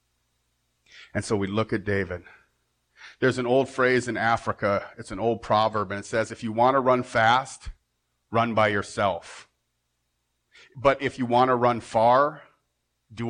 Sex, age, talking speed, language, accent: male, 40-59, 160 wpm, English, American